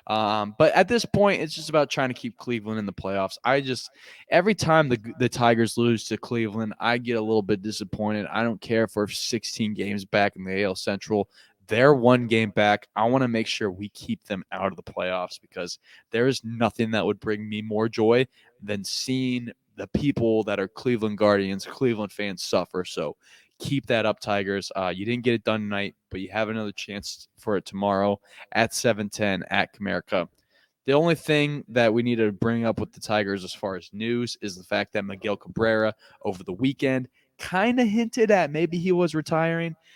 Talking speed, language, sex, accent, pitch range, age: 205 wpm, English, male, American, 105-130 Hz, 20-39